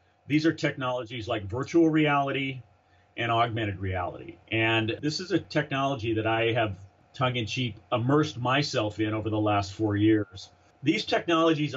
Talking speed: 155 wpm